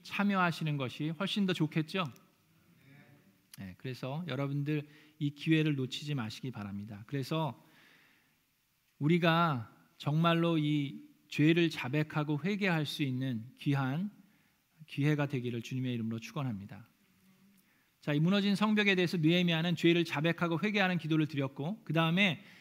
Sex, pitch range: male, 150-220 Hz